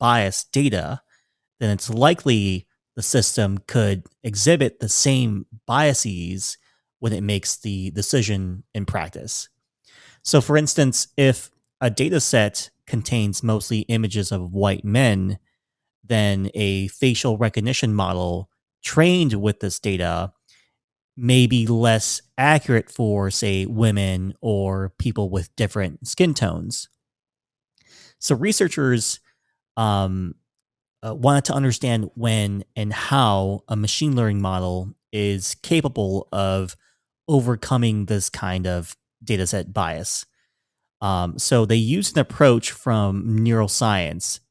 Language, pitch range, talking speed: English, 100-125 Hz, 115 wpm